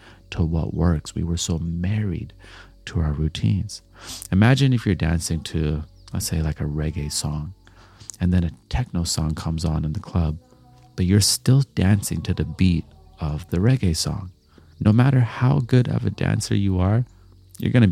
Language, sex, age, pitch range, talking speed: English, male, 30-49, 85-105 Hz, 180 wpm